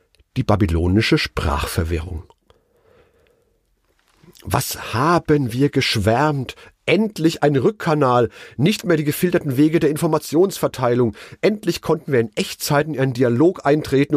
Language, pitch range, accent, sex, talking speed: German, 125-165 Hz, German, male, 110 wpm